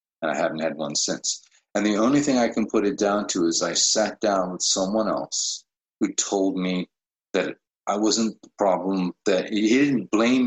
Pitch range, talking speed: 95-110 Hz, 200 wpm